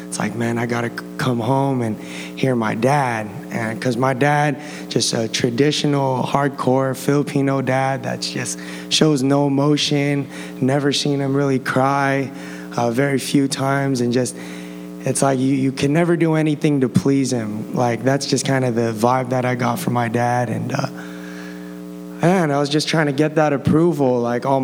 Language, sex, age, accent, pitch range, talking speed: English, male, 20-39, American, 115-140 Hz, 180 wpm